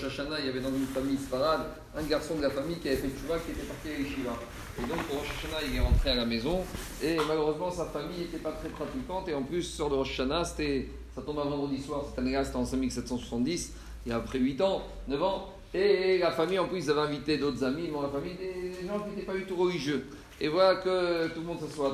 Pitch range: 140-180 Hz